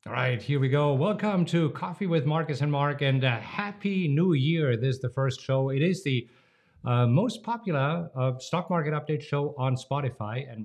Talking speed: 205 wpm